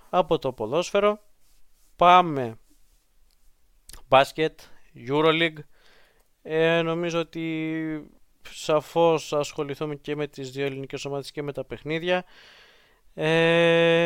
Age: 20-39